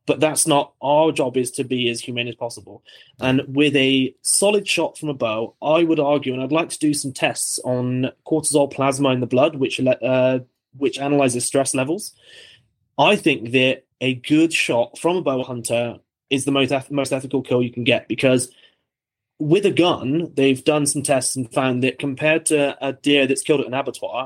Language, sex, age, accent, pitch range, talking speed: English, male, 20-39, British, 125-145 Hz, 200 wpm